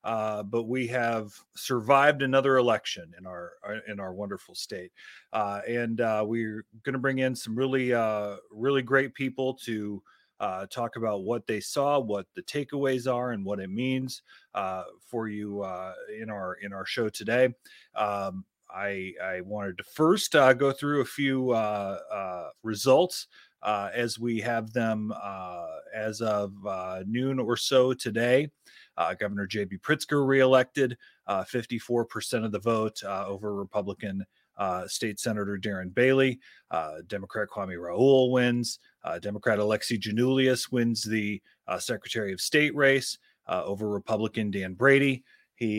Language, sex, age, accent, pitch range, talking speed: English, male, 30-49, American, 105-130 Hz, 155 wpm